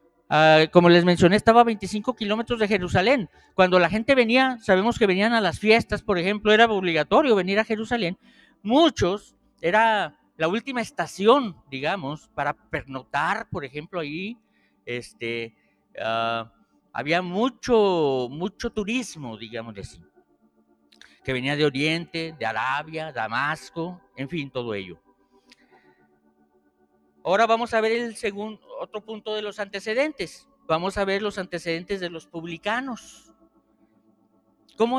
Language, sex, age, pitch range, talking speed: Spanish, male, 50-69, 155-235 Hz, 125 wpm